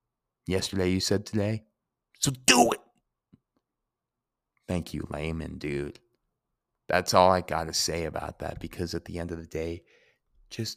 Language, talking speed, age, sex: English, 150 wpm, 30-49, male